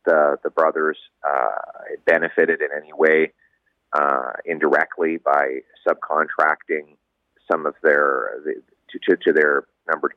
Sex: male